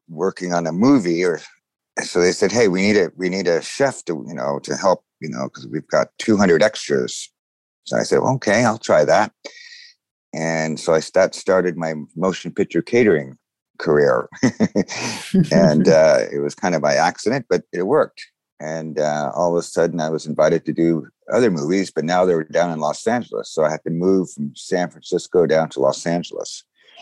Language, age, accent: English, 50-69, American